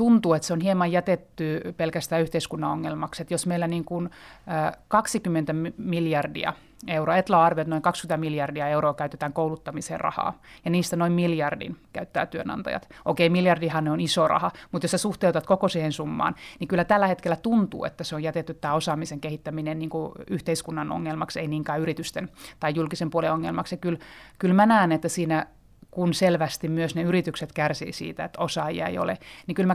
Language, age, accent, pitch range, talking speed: Finnish, 30-49, native, 155-175 Hz, 170 wpm